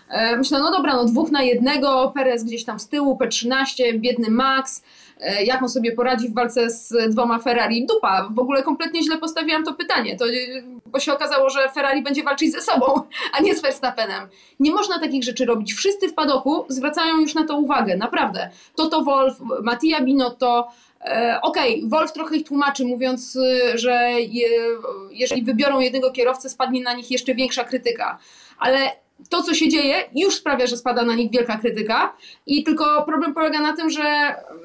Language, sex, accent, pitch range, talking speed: Polish, female, native, 245-305 Hz, 180 wpm